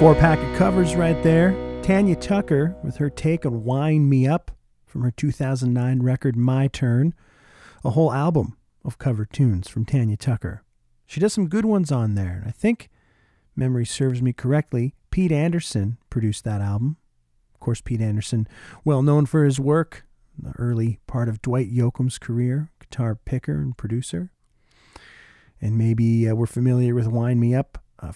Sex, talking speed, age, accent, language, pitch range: male, 160 wpm, 40-59, American, English, 110-140 Hz